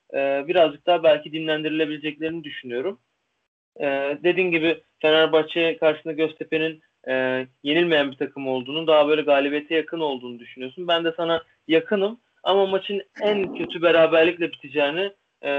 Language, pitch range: Turkish, 140-165 Hz